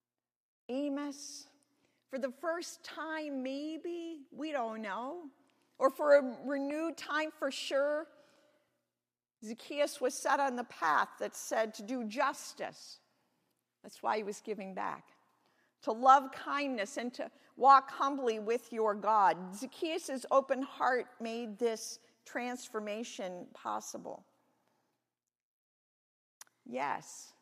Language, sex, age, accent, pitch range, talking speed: English, female, 50-69, American, 225-285 Hz, 110 wpm